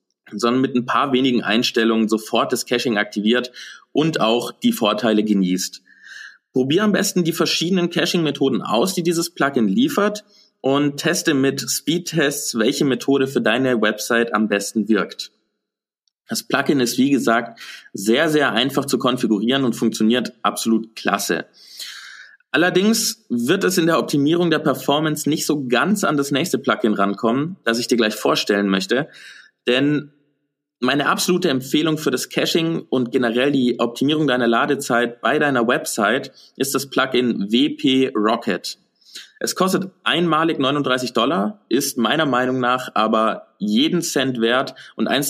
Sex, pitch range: male, 115-155 Hz